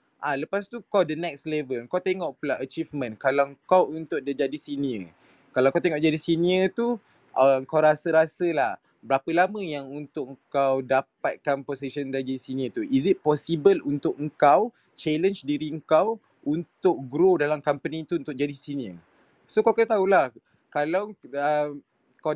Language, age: Malay, 20-39